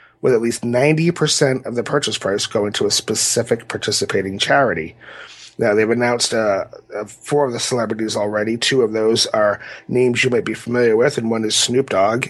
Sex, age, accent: male, 30-49, American